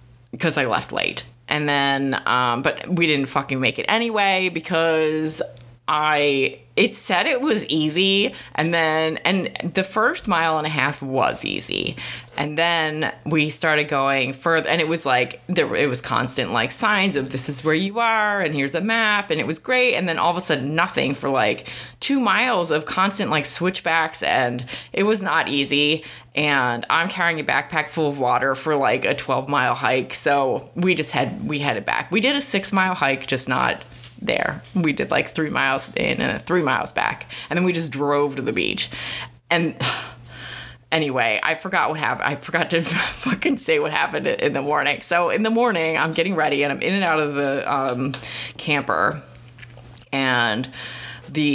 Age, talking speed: 20-39, 190 wpm